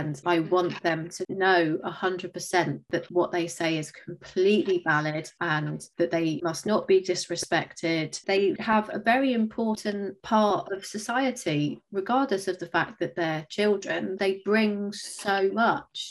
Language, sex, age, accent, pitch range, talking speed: English, female, 30-49, British, 165-195 Hz, 145 wpm